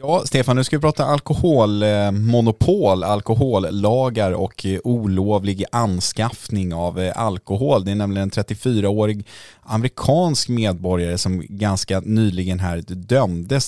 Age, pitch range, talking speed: 20-39, 95-115 Hz, 110 wpm